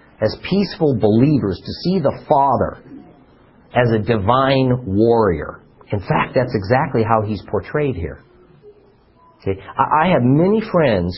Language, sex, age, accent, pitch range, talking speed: English, male, 50-69, American, 105-140 Hz, 125 wpm